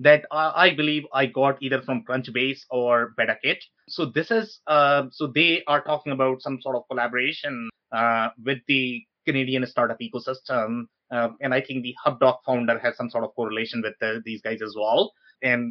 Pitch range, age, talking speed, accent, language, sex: 125-155 Hz, 20-39, 185 wpm, Indian, English, male